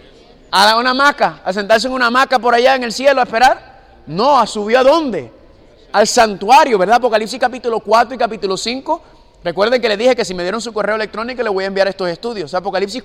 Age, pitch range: 30-49, 195-245 Hz